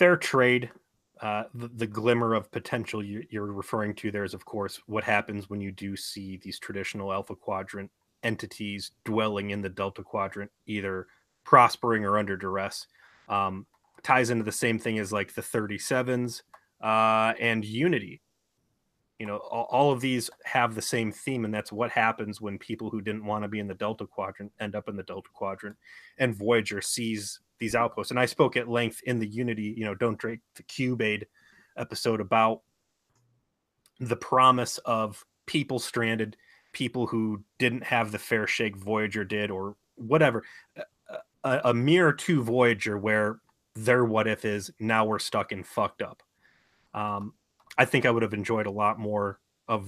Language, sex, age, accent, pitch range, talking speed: English, male, 30-49, American, 100-115 Hz, 175 wpm